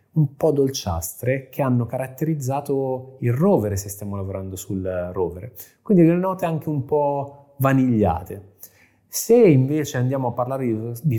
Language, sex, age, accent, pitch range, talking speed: Italian, male, 20-39, native, 110-140 Hz, 145 wpm